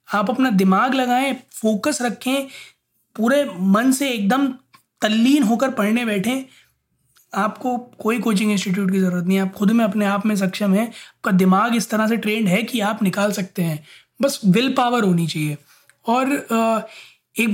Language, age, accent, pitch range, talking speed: Hindi, 20-39, native, 200-270 Hz, 170 wpm